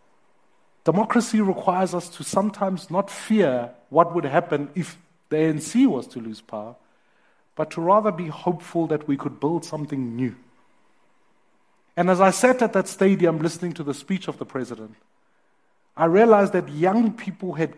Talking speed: 160 wpm